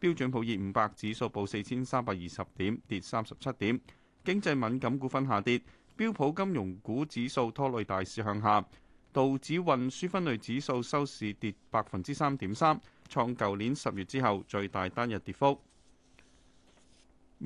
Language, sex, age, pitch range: Chinese, male, 30-49, 100-140 Hz